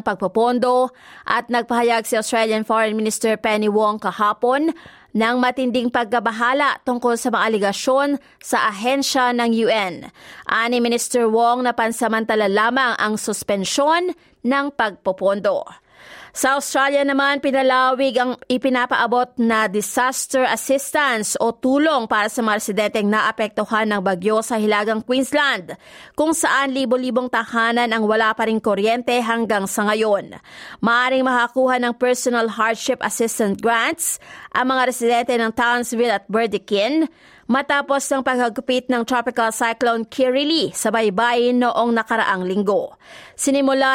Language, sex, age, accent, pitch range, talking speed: Filipino, female, 30-49, native, 220-255 Hz, 120 wpm